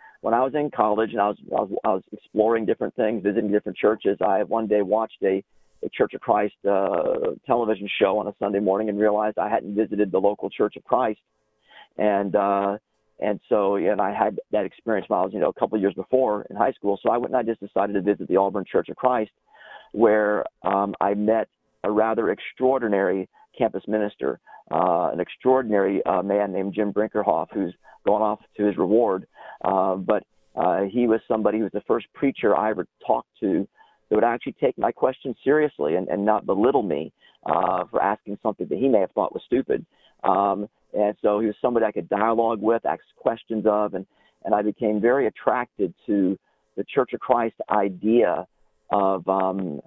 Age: 40-59